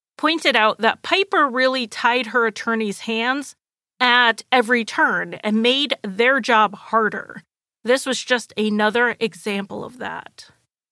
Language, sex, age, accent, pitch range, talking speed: English, female, 30-49, American, 215-270 Hz, 130 wpm